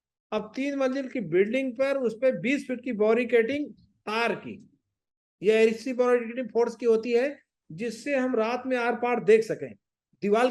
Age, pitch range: 50-69, 220-270 Hz